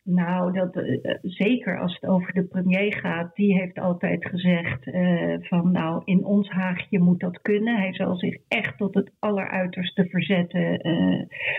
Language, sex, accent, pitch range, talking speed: Dutch, female, Dutch, 180-205 Hz, 165 wpm